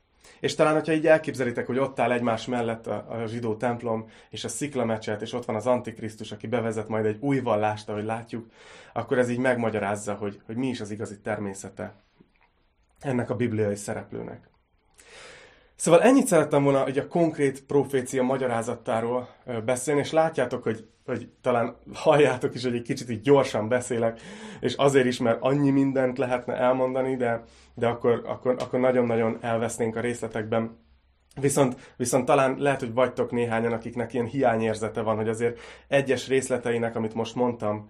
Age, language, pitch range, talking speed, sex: 30-49, Hungarian, 110-130 Hz, 160 wpm, male